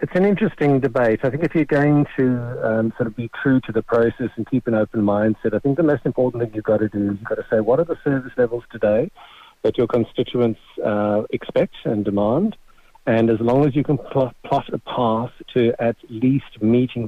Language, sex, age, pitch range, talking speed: English, male, 50-69, 110-125 Hz, 225 wpm